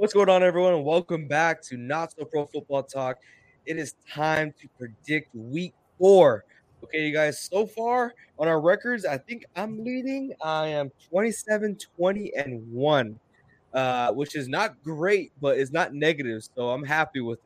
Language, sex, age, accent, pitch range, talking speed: English, male, 20-39, American, 130-180 Hz, 155 wpm